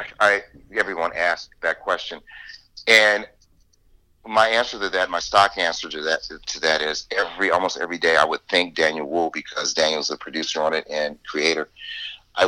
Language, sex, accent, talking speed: English, male, American, 180 wpm